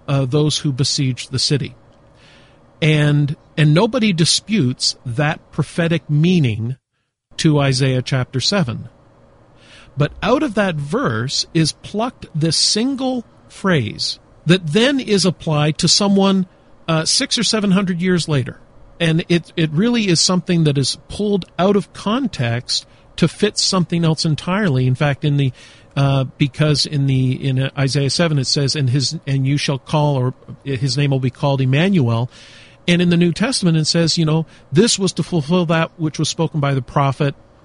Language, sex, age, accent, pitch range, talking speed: English, male, 50-69, American, 130-170 Hz, 165 wpm